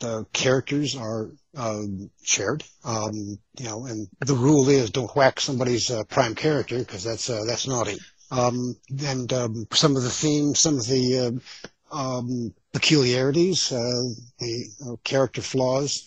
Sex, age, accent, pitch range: male, 60-79, American, 115-140 Hz